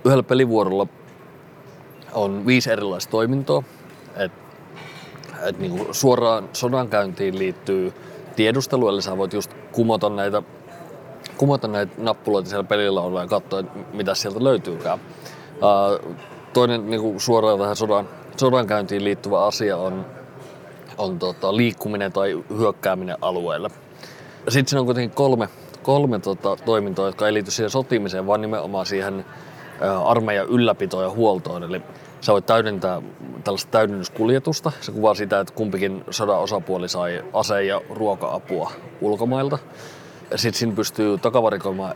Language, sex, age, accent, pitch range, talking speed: Finnish, male, 30-49, native, 100-125 Hz, 115 wpm